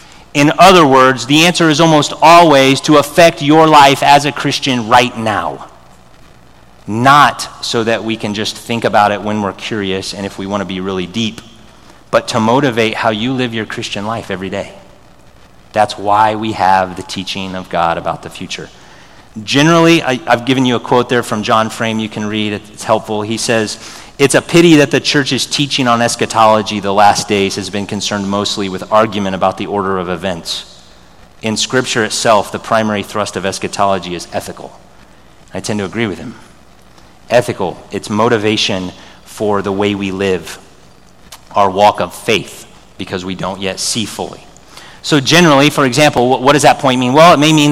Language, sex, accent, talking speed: English, male, American, 185 wpm